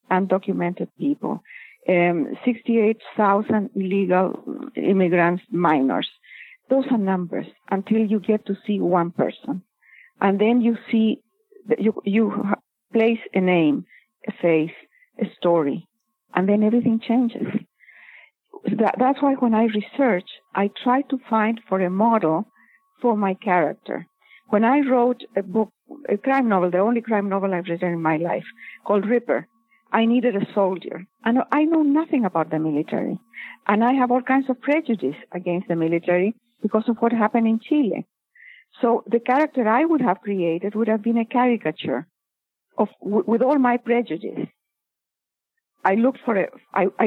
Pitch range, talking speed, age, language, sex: 190-240 Hz, 150 wpm, 50-69, English, female